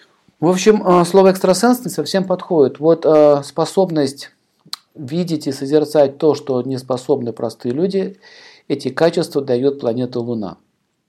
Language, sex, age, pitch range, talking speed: Russian, male, 50-69, 125-165 Hz, 120 wpm